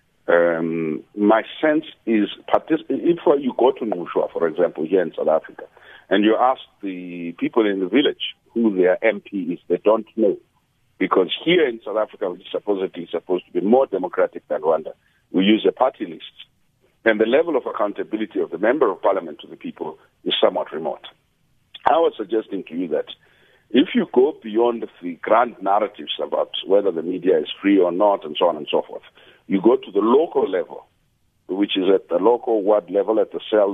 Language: English